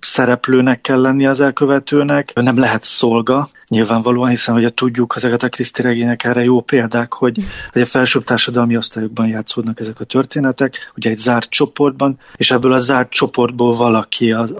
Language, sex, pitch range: Hungarian, male, 120-140 Hz